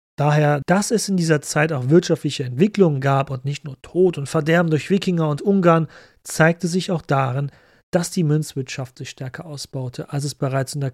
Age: 40-59